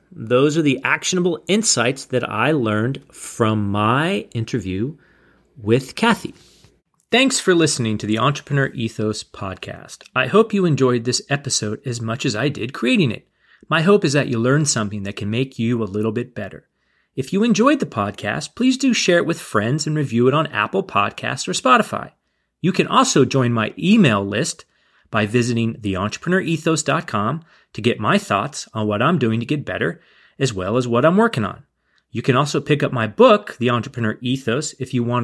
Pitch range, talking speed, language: 110-160 Hz, 185 wpm, English